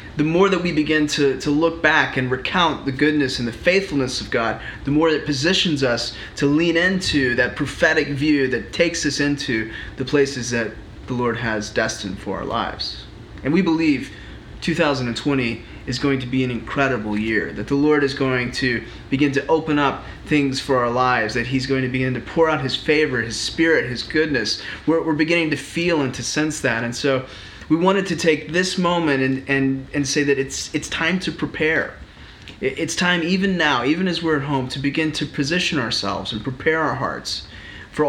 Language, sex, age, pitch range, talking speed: English, male, 30-49, 120-155 Hz, 200 wpm